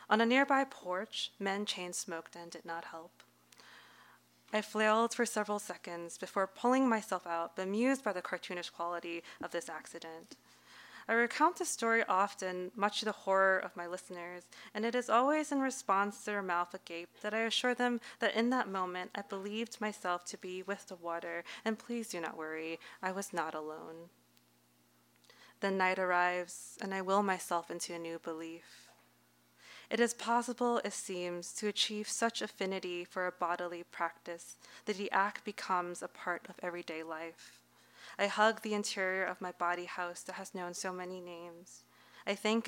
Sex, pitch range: female, 175-210 Hz